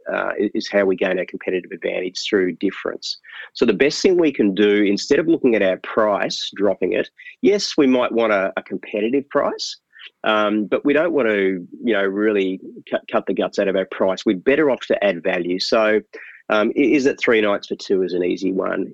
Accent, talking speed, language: Australian, 215 wpm, English